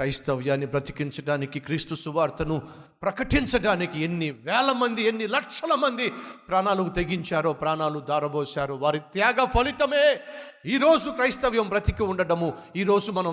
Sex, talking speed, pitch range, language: male, 100 wpm, 125-170 Hz, Telugu